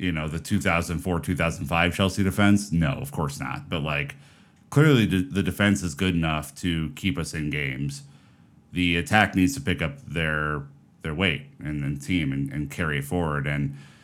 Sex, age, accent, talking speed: male, 30-49, American, 175 wpm